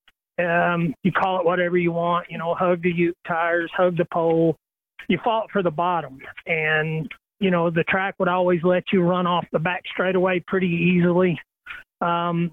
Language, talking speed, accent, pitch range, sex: English, 185 wpm, American, 175-200 Hz, male